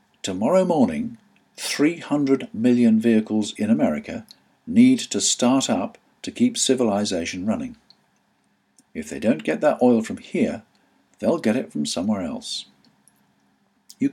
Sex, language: male, English